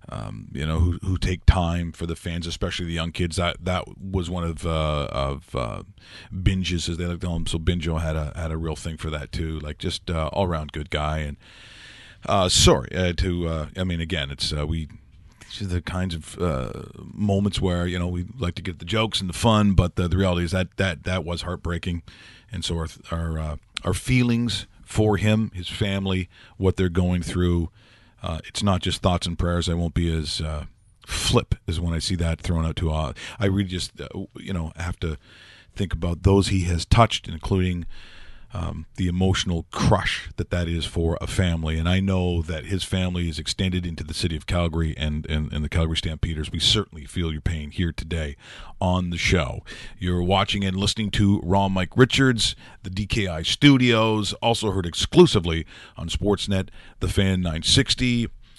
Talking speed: 200 wpm